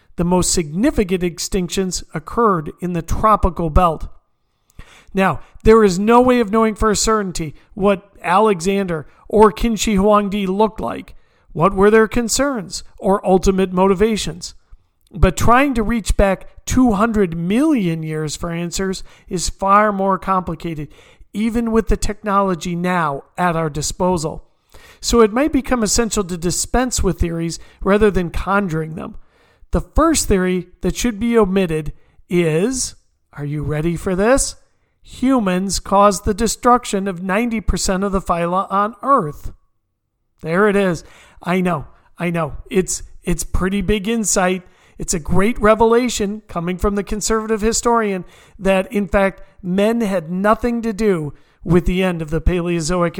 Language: English